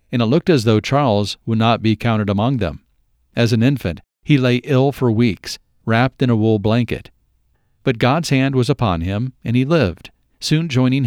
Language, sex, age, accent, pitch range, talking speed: English, male, 50-69, American, 105-130 Hz, 195 wpm